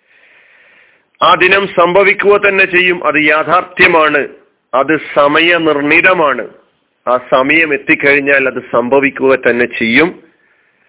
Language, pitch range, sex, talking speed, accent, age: Malayalam, 140-195 Hz, male, 95 wpm, native, 40-59